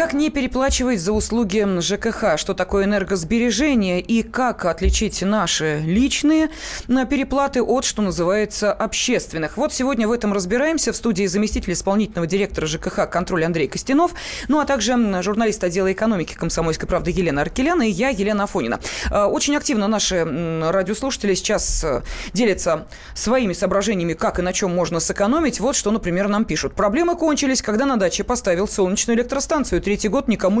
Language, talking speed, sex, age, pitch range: Russian, 150 wpm, female, 20-39, 195-250 Hz